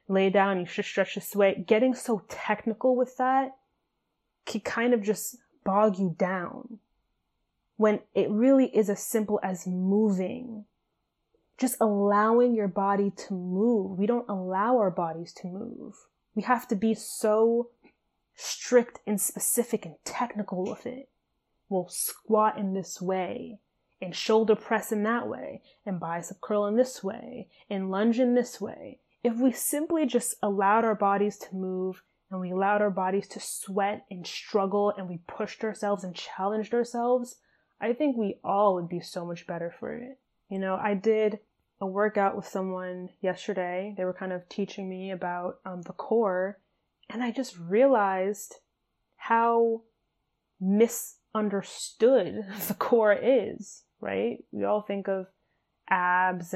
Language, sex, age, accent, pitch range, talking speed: English, female, 20-39, American, 190-230 Hz, 155 wpm